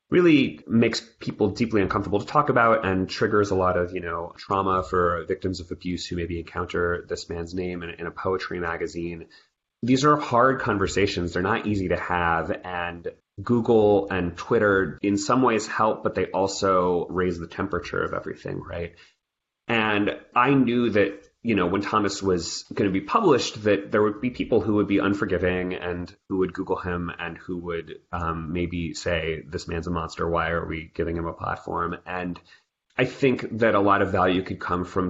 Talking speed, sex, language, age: 190 wpm, male, English, 30-49